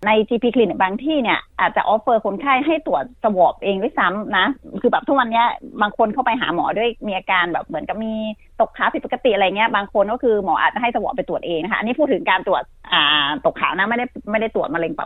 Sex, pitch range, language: female, 205-275 Hz, Thai